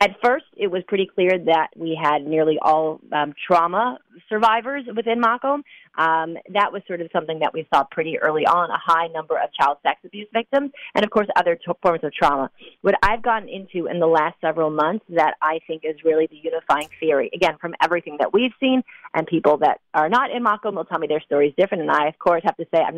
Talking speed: 220 wpm